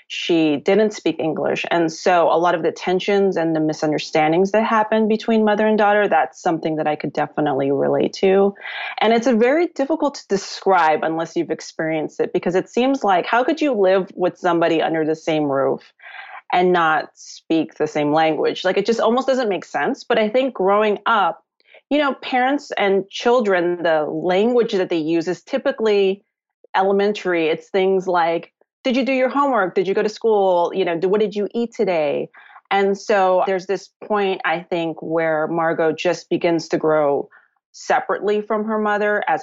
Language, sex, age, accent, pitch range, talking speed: English, female, 30-49, American, 165-215 Hz, 185 wpm